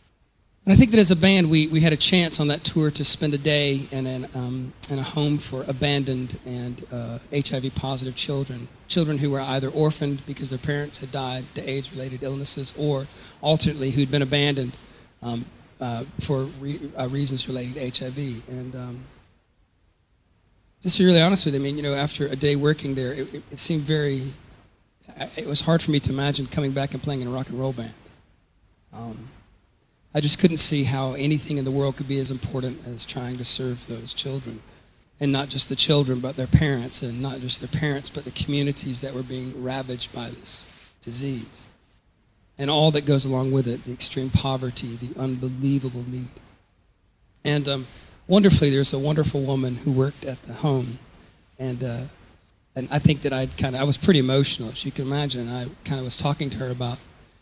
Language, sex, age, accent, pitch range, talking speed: English, male, 40-59, American, 125-145 Hz, 195 wpm